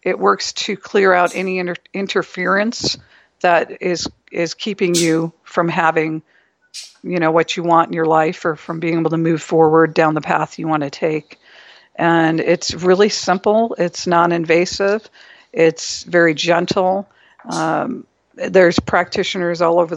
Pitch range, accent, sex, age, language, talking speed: 165-185 Hz, American, female, 50-69, English, 155 wpm